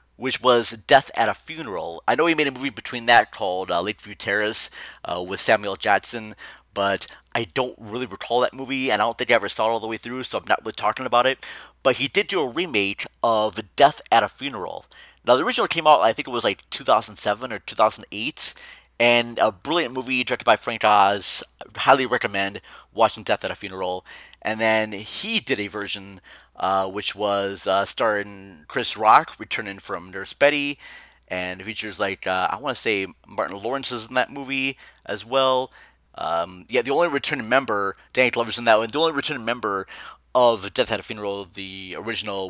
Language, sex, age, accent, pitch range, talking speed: English, male, 30-49, American, 100-130 Hz, 200 wpm